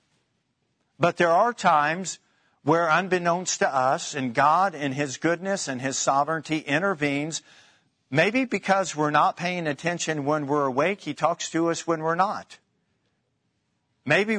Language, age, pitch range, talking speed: English, 50-69, 135-165 Hz, 140 wpm